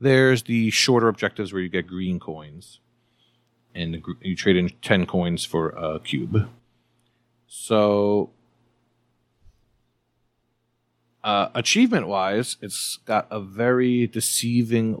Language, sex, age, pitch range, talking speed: English, male, 40-59, 95-120 Hz, 110 wpm